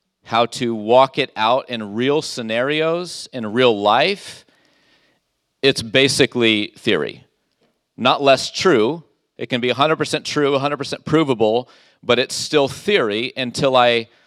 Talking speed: 125 wpm